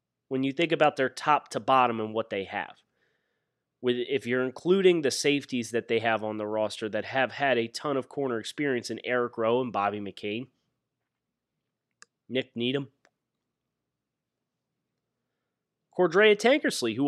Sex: male